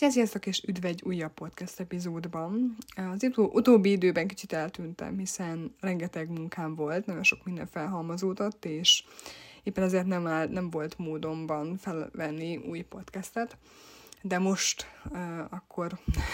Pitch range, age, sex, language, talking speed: 165-190 Hz, 20-39, female, Hungarian, 120 wpm